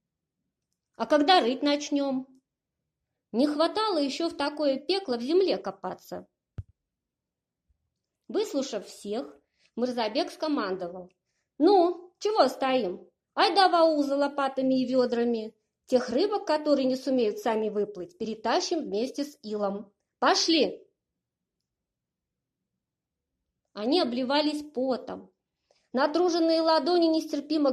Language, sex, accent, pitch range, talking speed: Russian, female, American, 230-320 Hz, 95 wpm